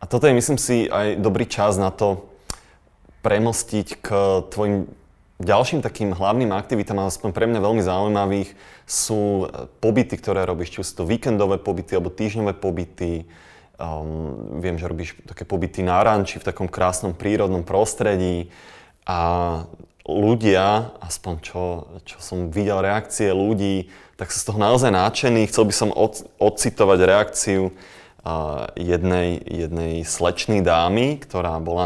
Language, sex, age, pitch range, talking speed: Slovak, male, 20-39, 90-110 Hz, 140 wpm